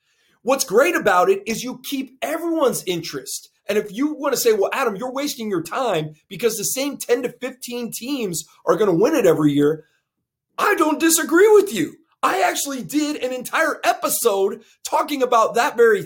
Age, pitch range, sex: 30-49, 200-305 Hz, male